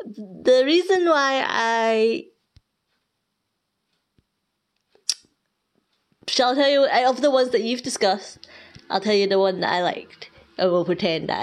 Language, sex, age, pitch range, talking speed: English, female, 20-39, 170-245 Hz, 135 wpm